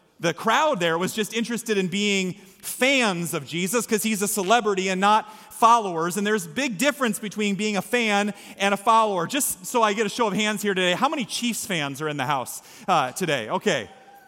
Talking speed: 215 wpm